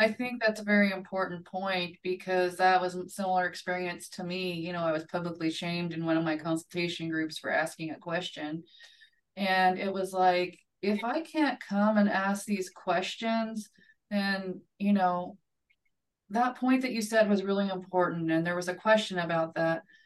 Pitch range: 175-200 Hz